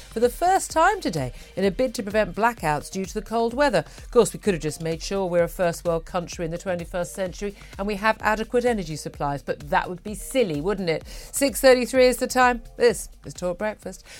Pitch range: 175-245 Hz